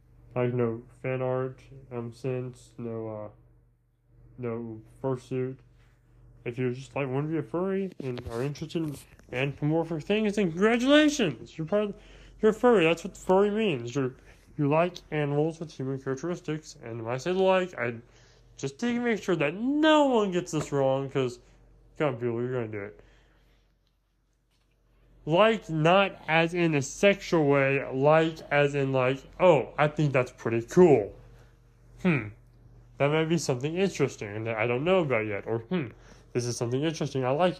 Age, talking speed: 20-39, 165 wpm